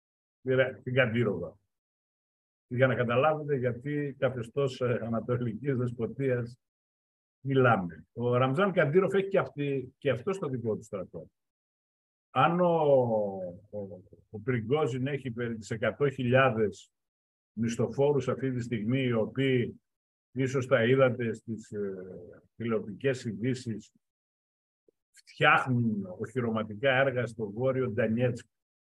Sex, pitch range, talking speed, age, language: male, 105-130 Hz, 105 wpm, 50-69, Greek